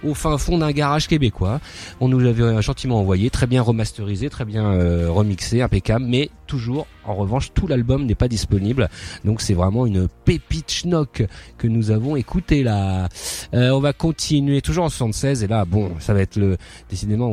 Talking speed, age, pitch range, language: 185 wpm, 30-49, 100-125 Hz, French